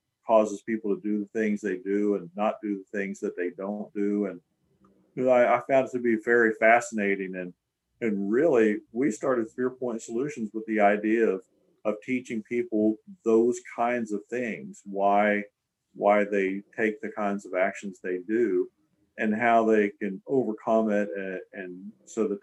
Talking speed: 180 wpm